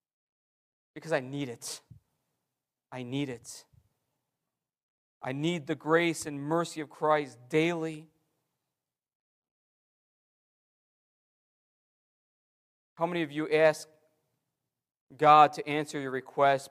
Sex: male